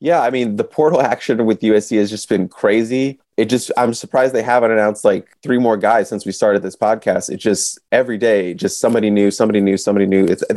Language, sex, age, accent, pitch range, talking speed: English, male, 20-39, American, 105-125 Hz, 225 wpm